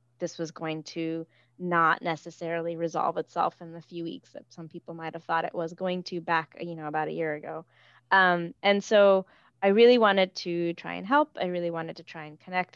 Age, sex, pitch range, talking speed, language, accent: 20-39, female, 160-185 Hz, 215 wpm, English, American